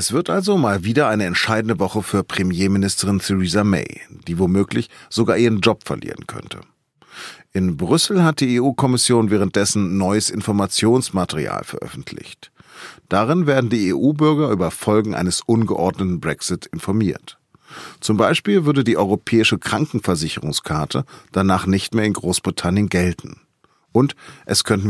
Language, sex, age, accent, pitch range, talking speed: German, male, 40-59, German, 95-120 Hz, 130 wpm